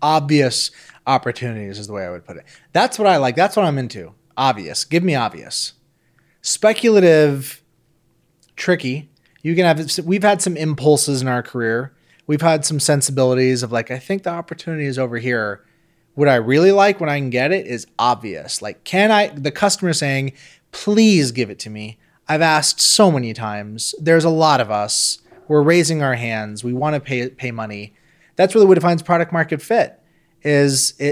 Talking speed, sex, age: 185 wpm, male, 30-49